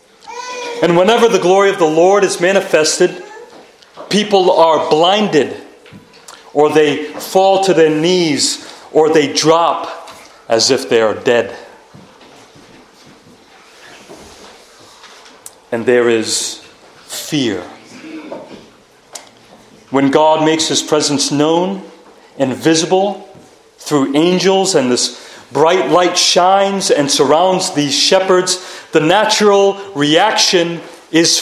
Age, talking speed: 40-59, 100 wpm